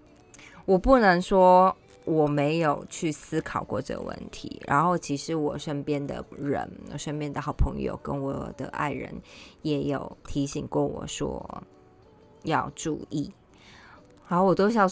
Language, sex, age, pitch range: Chinese, female, 20-39, 150-200 Hz